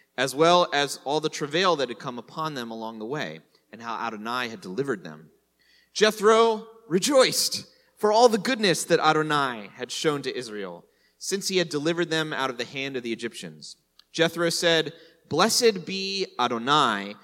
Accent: American